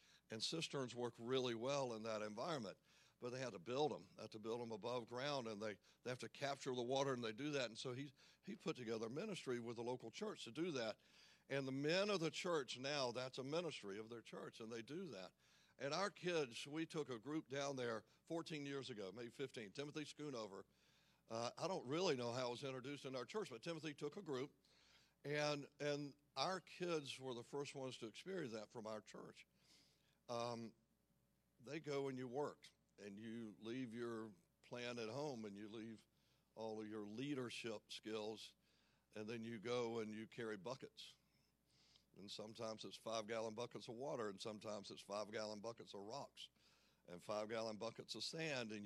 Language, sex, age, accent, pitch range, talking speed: English, male, 60-79, American, 110-140 Hz, 200 wpm